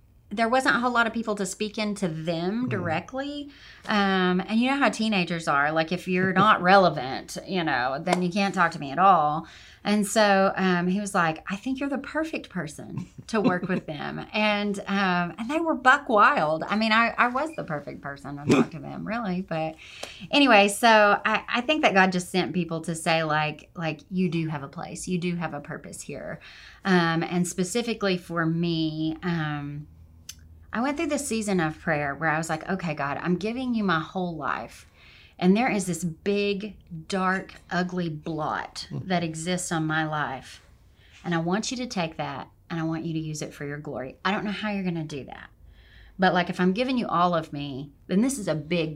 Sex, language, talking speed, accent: female, English, 215 wpm, American